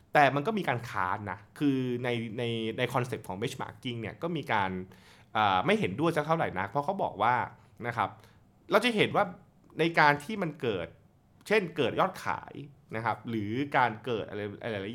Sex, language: male, Thai